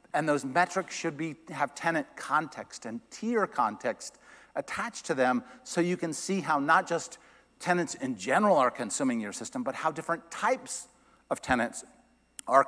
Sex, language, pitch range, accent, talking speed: male, English, 135-185 Hz, American, 165 wpm